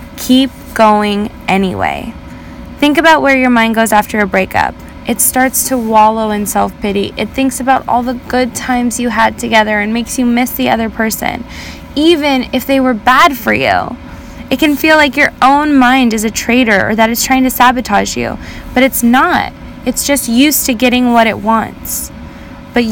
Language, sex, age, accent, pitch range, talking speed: English, female, 10-29, American, 215-265 Hz, 185 wpm